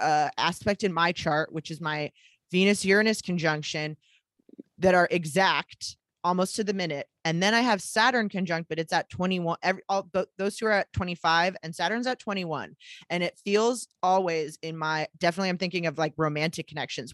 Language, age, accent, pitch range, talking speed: English, 20-39, American, 165-200 Hz, 180 wpm